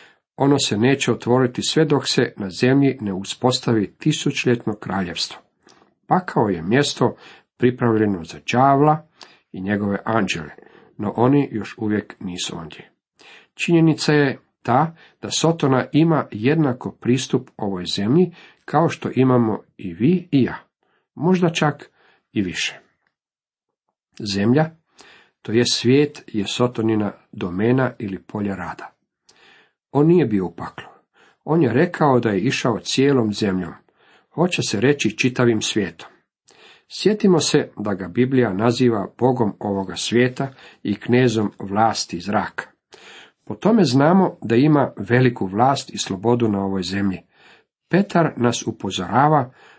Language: Croatian